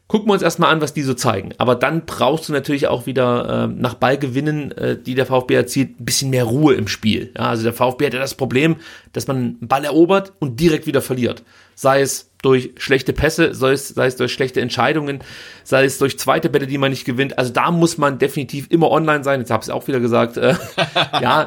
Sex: male